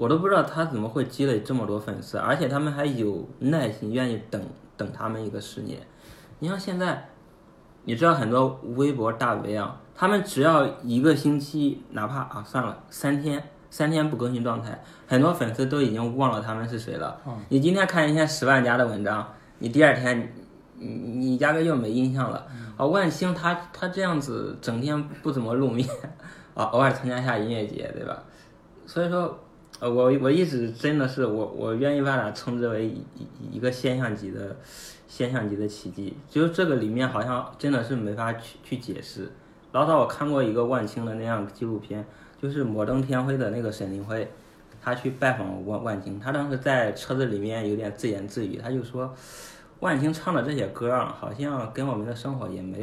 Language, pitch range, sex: Chinese, 110-140 Hz, male